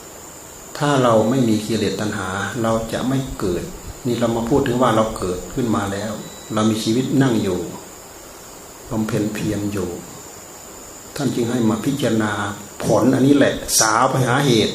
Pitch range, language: 110-135 Hz, Thai